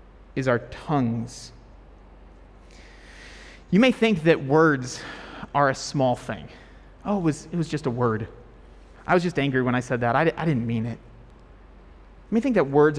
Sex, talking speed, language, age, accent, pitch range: male, 175 wpm, English, 30-49, American, 115-180 Hz